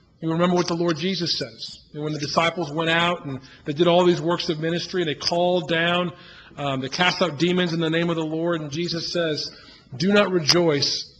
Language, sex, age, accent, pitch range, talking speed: English, male, 40-59, American, 135-170 Hz, 225 wpm